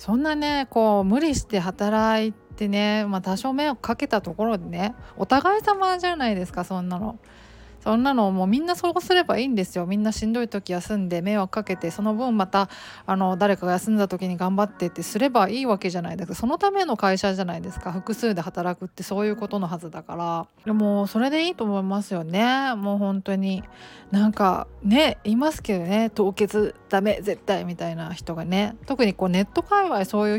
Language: Japanese